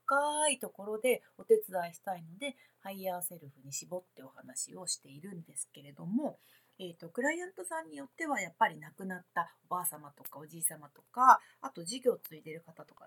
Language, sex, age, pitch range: Japanese, female, 30-49, 165-270 Hz